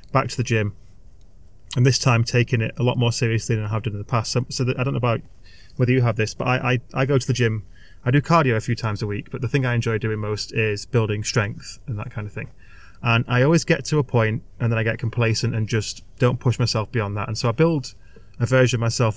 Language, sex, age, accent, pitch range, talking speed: Ukrainian, male, 20-39, British, 110-125 Hz, 280 wpm